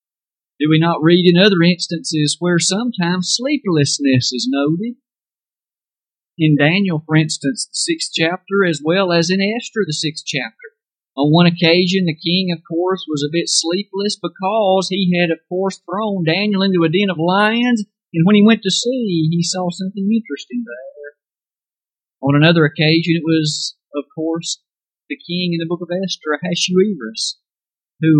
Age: 50-69